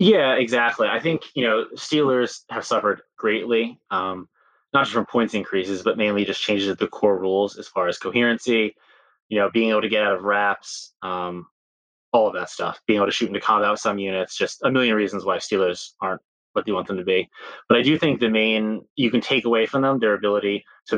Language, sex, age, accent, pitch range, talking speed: English, male, 20-39, American, 100-115 Hz, 225 wpm